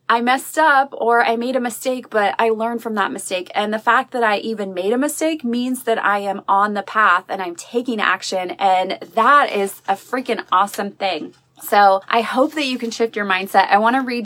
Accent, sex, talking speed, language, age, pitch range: American, female, 225 wpm, English, 20-39, 195-235 Hz